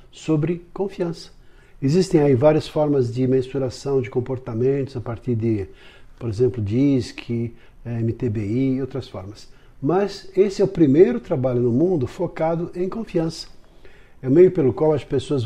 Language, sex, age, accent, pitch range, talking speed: Portuguese, male, 60-79, Brazilian, 130-170 Hz, 150 wpm